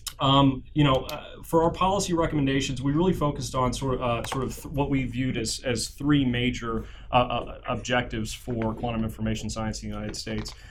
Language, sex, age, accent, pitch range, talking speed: English, male, 30-49, American, 115-130 Hz, 185 wpm